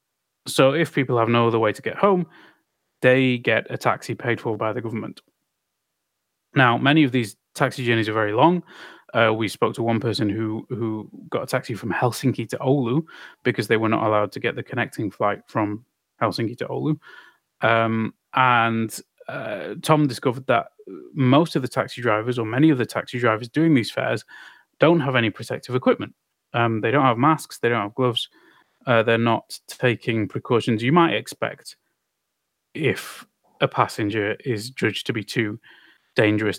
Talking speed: 175 wpm